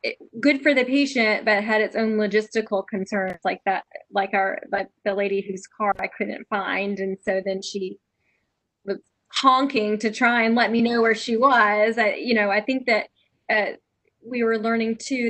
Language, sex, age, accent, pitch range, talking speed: English, female, 10-29, American, 190-220 Hz, 195 wpm